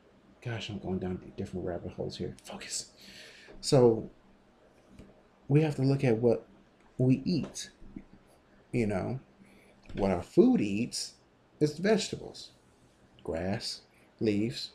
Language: English